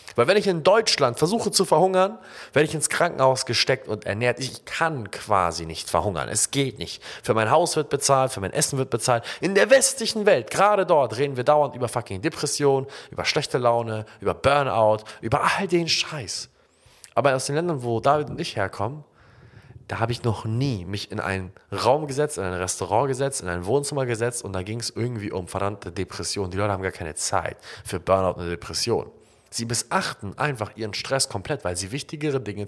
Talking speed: 200 wpm